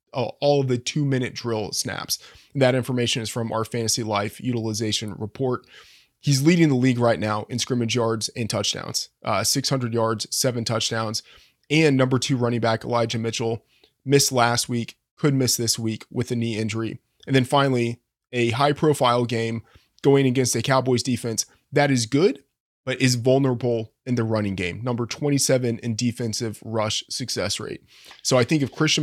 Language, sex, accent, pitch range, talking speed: English, male, American, 115-130 Hz, 175 wpm